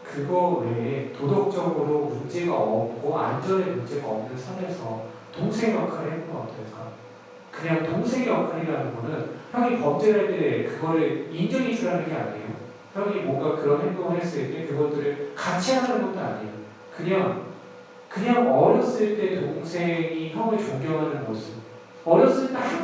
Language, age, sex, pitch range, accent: Korean, 40-59, male, 140-215 Hz, native